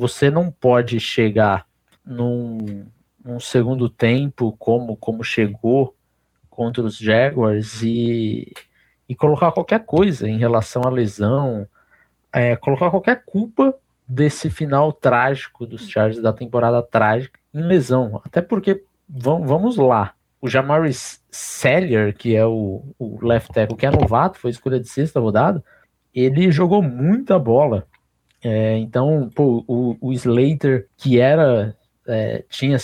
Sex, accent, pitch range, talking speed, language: male, Brazilian, 115-145 Hz, 130 wpm, Portuguese